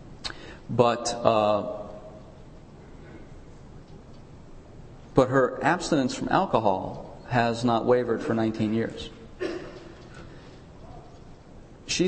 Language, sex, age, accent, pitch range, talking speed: English, male, 40-59, American, 115-155 Hz, 70 wpm